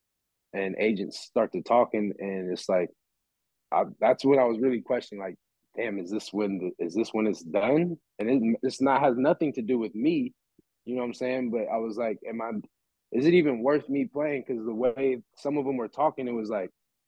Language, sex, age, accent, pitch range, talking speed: English, male, 20-39, American, 100-130 Hz, 230 wpm